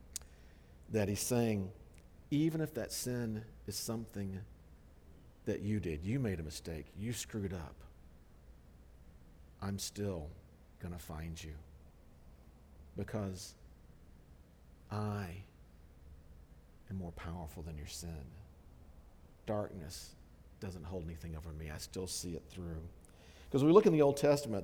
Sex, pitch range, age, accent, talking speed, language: male, 80-120 Hz, 50-69, American, 125 wpm, English